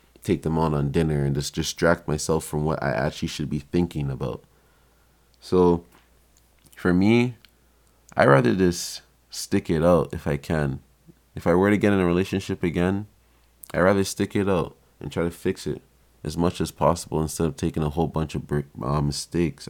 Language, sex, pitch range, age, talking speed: English, male, 75-90 Hz, 20-39, 190 wpm